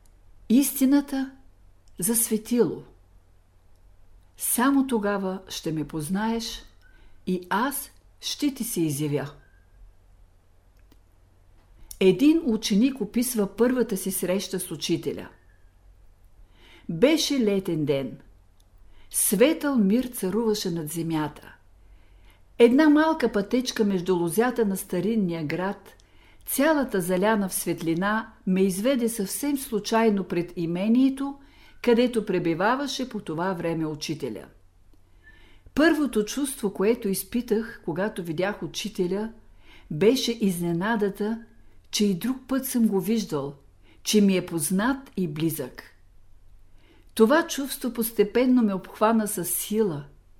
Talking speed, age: 100 wpm, 50-69